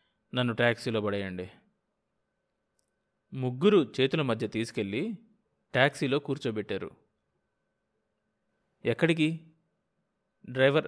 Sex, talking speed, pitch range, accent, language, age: male, 60 wpm, 115-160 Hz, native, Telugu, 20-39